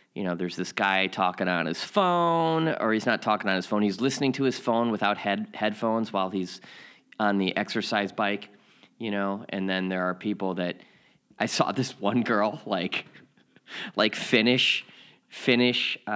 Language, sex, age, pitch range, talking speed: English, male, 30-49, 95-115 Hz, 175 wpm